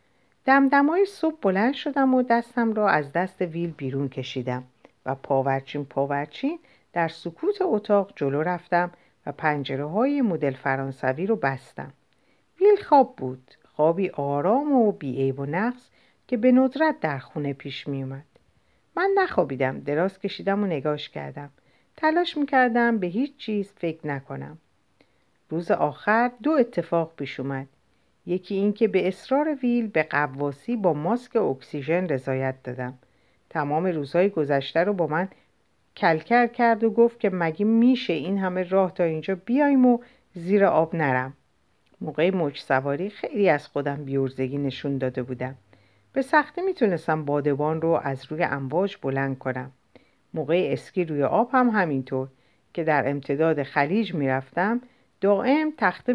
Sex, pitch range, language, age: female, 140-230 Hz, Persian, 50-69